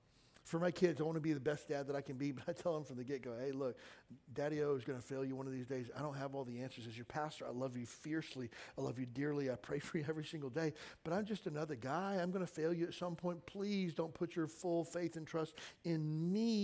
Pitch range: 145-185 Hz